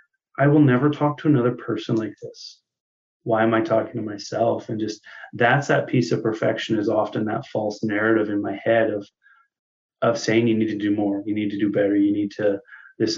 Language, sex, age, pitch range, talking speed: English, male, 20-39, 105-120 Hz, 215 wpm